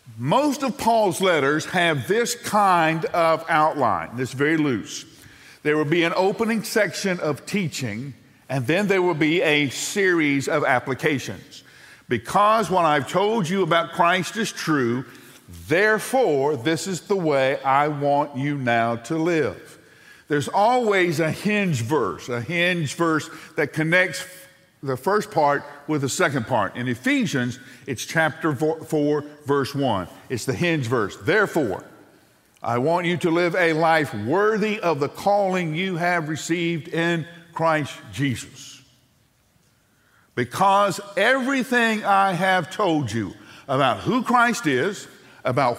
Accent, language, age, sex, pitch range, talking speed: American, English, 50-69, male, 140-185 Hz, 140 wpm